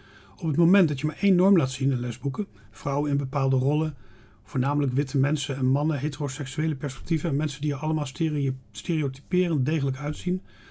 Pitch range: 130-165 Hz